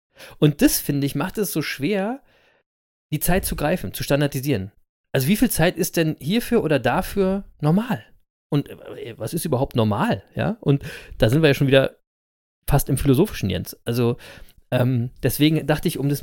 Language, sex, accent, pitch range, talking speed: German, male, German, 135-180 Hz, 180 wpm